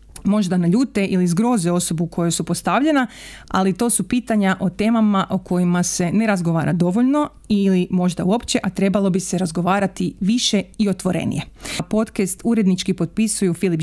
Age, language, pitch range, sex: 30-49, Croatian, 180-215 Hz, female